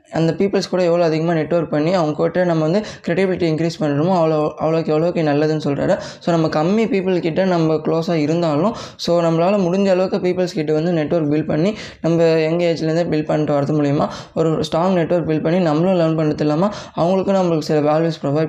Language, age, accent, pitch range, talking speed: Tamil, 20-39, native, 155-175 Hz, 180 wpm